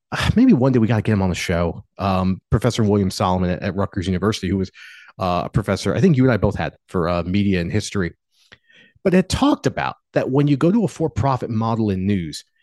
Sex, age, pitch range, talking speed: male, 30-49, 105-160 Hz, 240 wpm